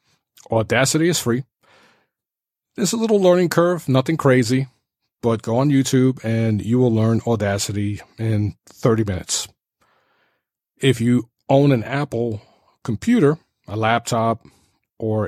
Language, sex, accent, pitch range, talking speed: English, male, American, 105-130 Hz, 120 wpm